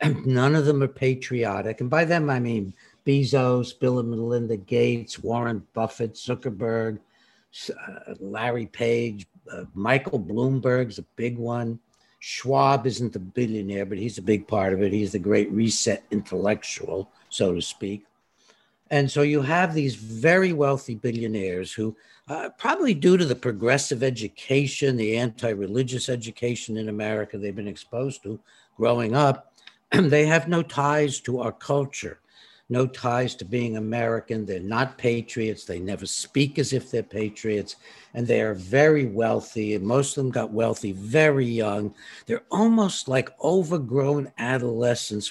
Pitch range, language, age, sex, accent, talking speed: 110-135 Hz, English, 60-79, male, American, 150 wpm